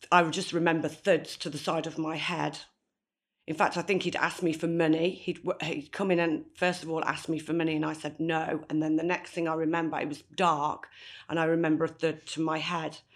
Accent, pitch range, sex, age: British, 155-170 Hz, female, 40-59